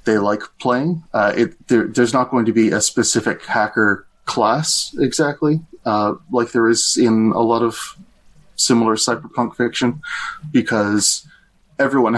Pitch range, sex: 100-120 Hz, male